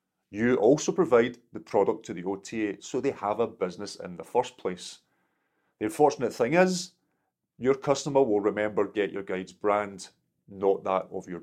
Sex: male